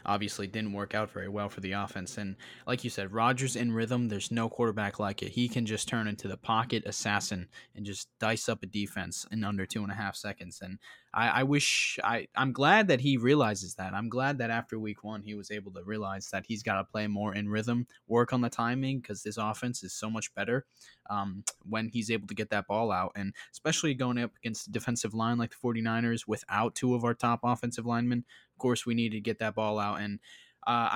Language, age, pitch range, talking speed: English, 20-39, 100-120 Hz, 230 wpm